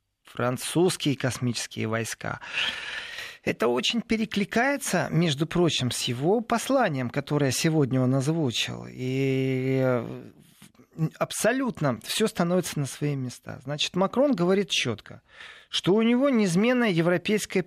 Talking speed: 105 wpm